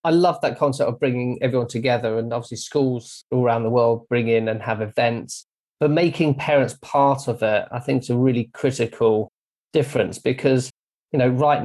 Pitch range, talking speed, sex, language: 120-140 Hz, 190 wpm, male, English